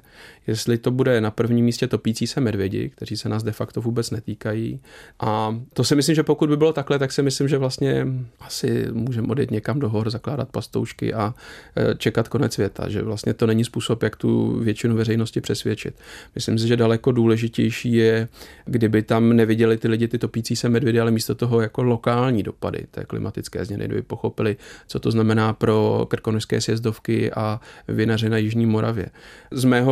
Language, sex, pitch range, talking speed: Czech, male, 110-120 Hz, 185 wpm